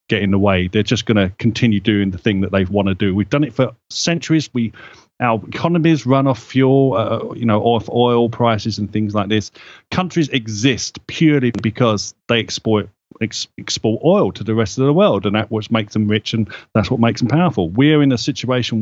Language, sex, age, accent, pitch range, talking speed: English, male, 40-59, British, 110-140 Hz, 220 wpm